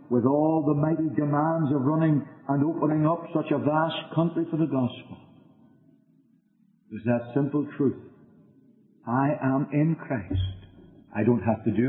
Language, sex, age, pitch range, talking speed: English, male, 60-79, 115-150 Hz, 150 wpm